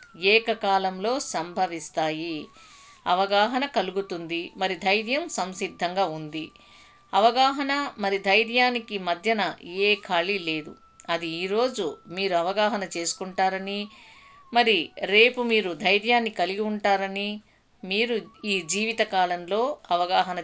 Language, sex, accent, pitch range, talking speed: Telugu, female, native, 170-230 Hz, 90 wpm